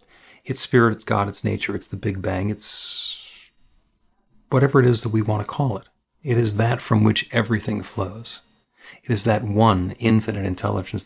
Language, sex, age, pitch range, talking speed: English, male, 40-59, 100-120 Hz, 180 wpm